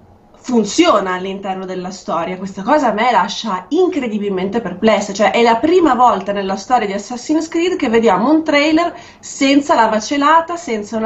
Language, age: Italian, 20-39